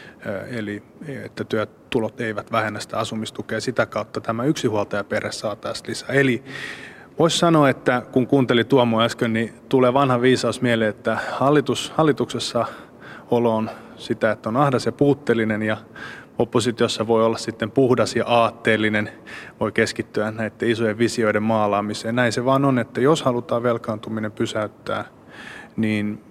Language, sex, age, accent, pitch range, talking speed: Finnish, male, 20-39, native, 110-125 Hz, 140 wpm